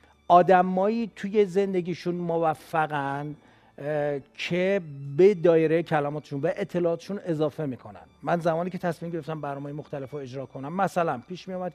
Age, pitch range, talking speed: 40-59, 140-180 Hz, 135 wpm